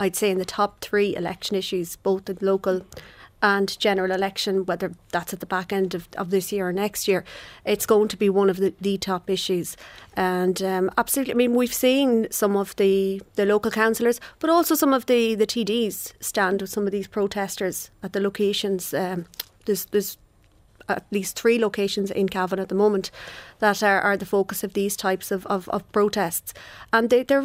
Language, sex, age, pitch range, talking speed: English, female, 30-49, 190-215 Hz, 205 wpm